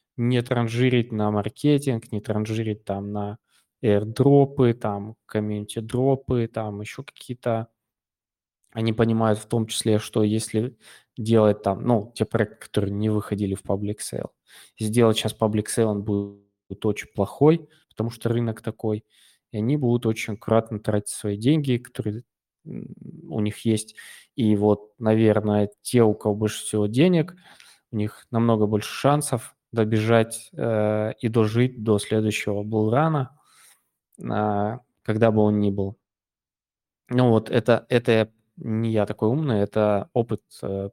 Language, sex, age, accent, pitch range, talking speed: Russian, male, 20-39, native, 105-115 Hz, 140 wpm